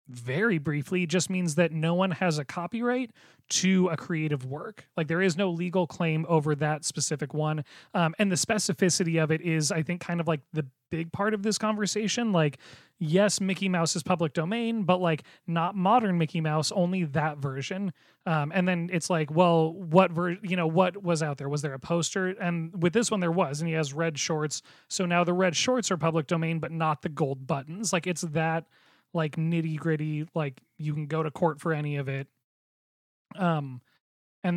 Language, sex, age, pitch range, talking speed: English, male, 30-49, 155-185 Hz, 205 wpm